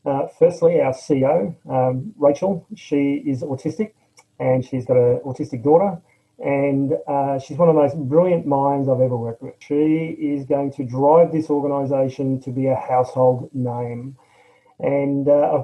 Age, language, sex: 30-49, English, male